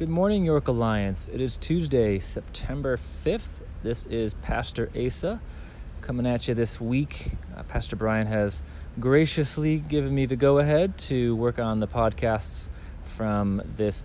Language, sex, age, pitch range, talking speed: English, male, 30-49, 90-125 Hz, 145 wpm